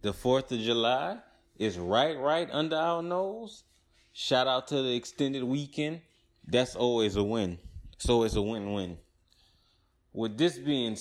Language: English